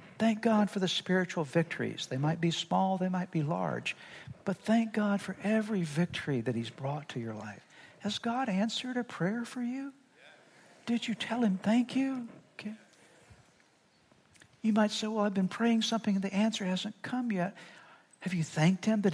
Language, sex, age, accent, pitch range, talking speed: English, male, 60-79, American, 165-220 Hz, 185 wpm